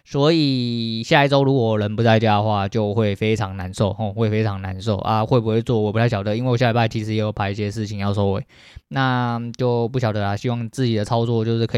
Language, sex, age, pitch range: Chinese, male, 20-39, 110-135 Hz